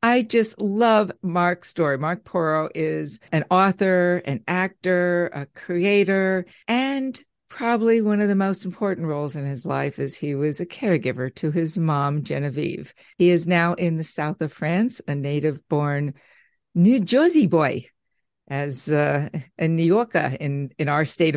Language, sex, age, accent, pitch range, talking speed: English, female, 60-79, American, 150-195 Hz, 155 wpm